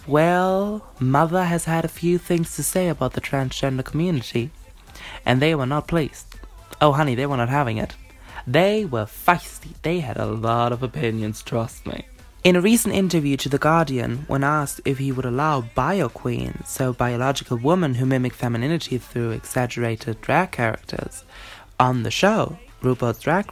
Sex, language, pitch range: male, English, 120-165 Hz